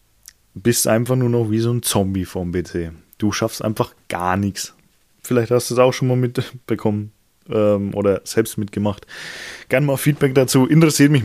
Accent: German